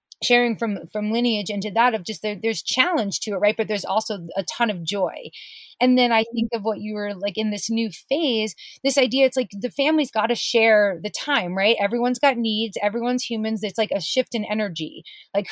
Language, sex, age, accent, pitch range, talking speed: English, female, 30-49, American, 215-255 Hz, 220 wpm